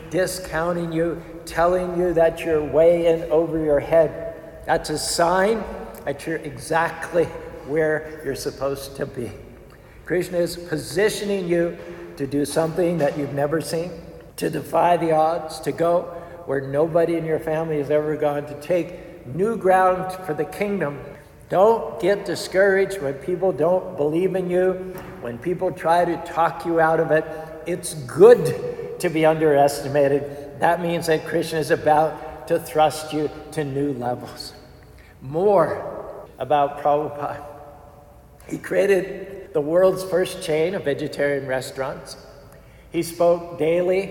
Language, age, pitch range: English, 60-79, 150-175 Hz